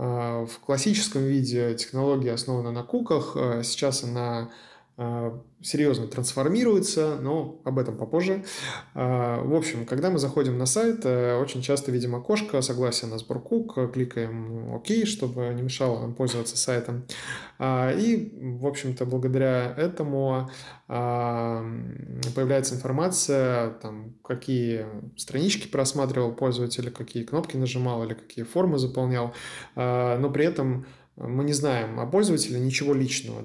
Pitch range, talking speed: 120-140 Hz, 120 wpm